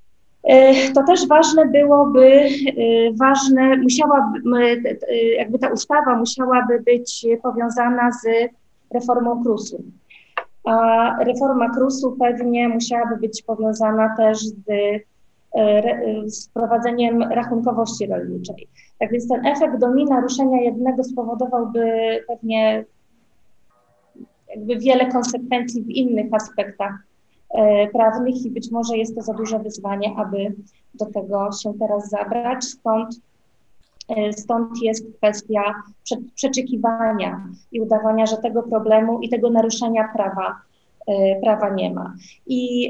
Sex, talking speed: female, 105 wpm